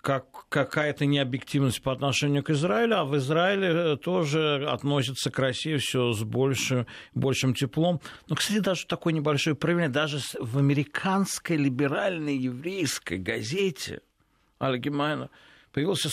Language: Russian